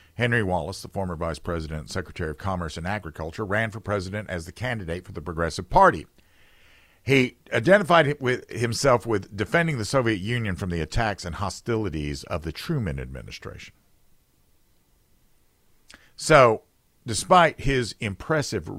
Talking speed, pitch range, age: 140 wpm, 85-120 Hz, 50-69